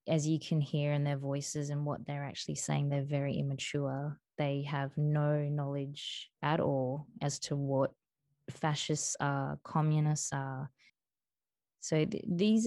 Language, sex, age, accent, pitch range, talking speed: English, female, 20-39, Australian, 145-170 Hz, 145 wpm